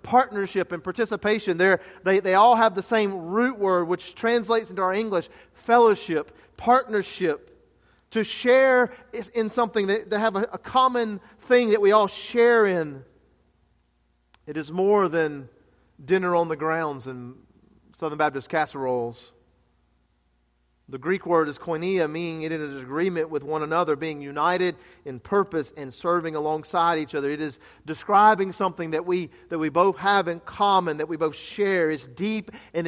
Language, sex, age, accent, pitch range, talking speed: English, male, 40-59, American, 145-205 Hz, 160 wpm